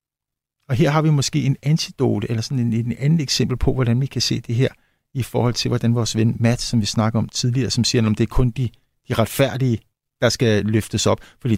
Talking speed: 240 wpm